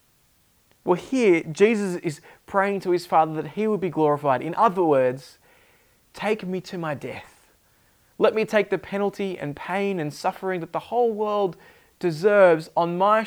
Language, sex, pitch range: English, male, 150-195 Hz